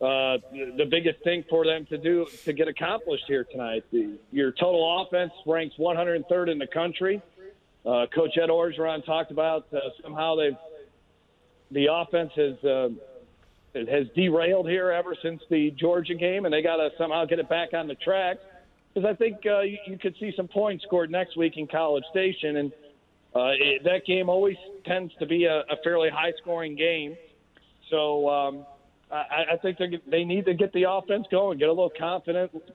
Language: English